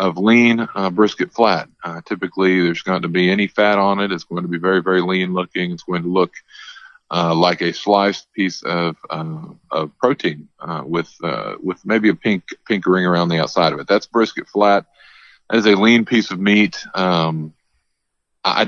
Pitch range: 85-105 Hz